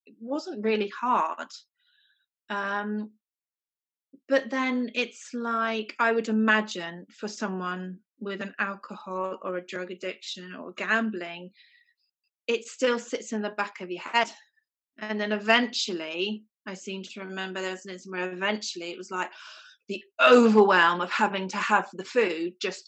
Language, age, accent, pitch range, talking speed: English, 30-49, British, 180-225 Hz, 150 wpm